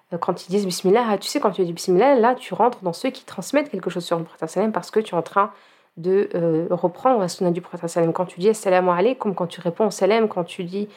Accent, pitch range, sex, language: French, 175-205 Hz, female, French